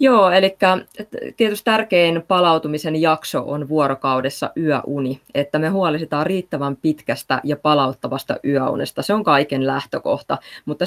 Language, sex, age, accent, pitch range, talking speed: Finnish, female, 20-39, native, 135-165 Hz, 120 wpm